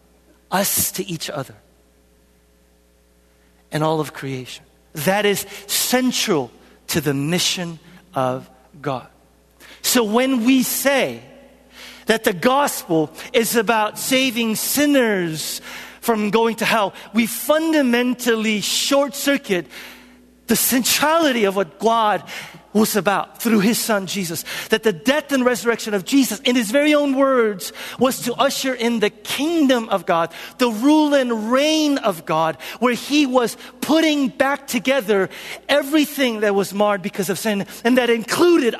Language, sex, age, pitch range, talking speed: English, male, 50-69, 165-260 Hz, 135 wpm